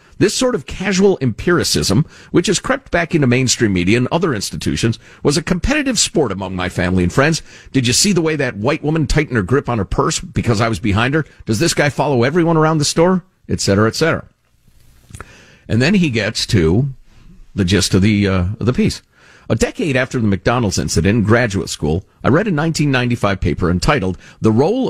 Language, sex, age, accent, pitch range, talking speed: English, male, 50-69, American, 100-150 Hz, 200 wpm